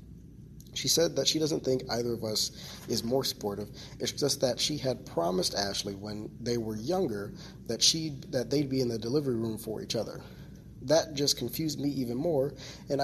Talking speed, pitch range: 195 wpm, 110-140 Hz